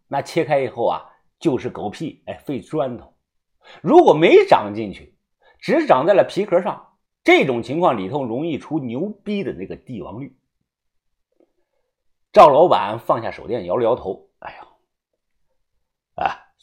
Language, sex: Chinese, male